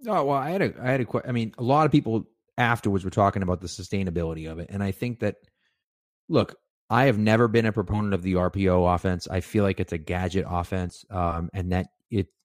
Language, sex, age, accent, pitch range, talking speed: English, male, 30-49, American, 95-115 Hz, 245 wpm